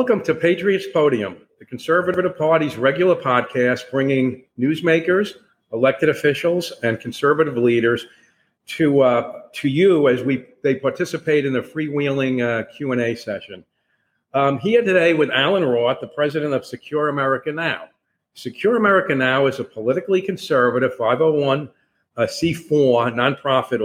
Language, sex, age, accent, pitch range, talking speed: English, male, 50-69, American, 125-160 Hz, 130 wpm